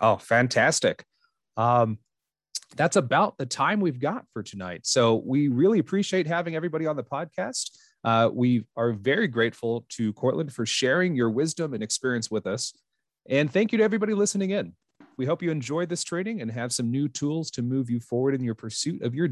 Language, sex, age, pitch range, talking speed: English, male, 30-49, 115-160 Hz, 195 wpm